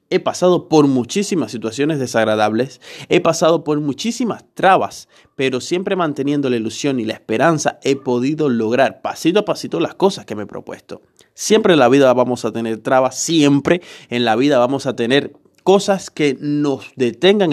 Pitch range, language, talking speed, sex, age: 125-175 Hz, Spanish, 170 wpm, male, 30-49